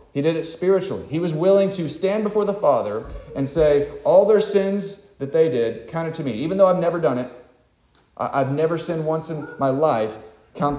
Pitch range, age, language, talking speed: 125-170 Hz, 40-59, English, 210 wpm